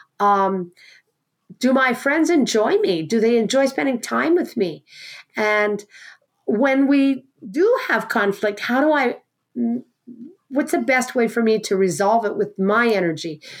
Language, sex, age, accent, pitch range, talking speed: English, female, 50-69, American, 190-250 Hz, 150 wpm